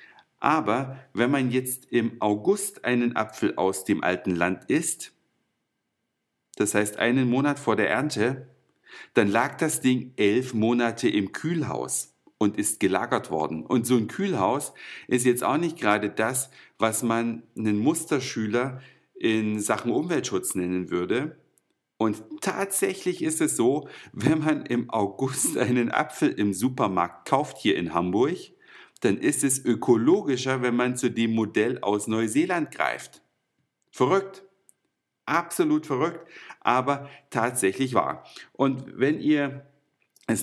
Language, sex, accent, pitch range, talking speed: German, male, German, 110-140 Hz, 135 wpm